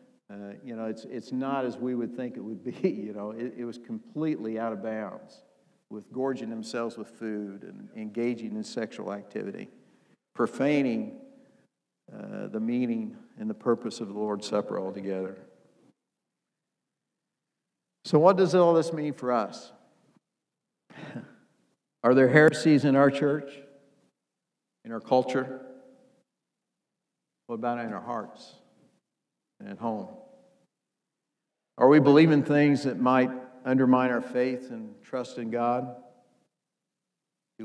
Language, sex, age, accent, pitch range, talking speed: English, male, 60-79, American, 110-150 Hz, 130 wpm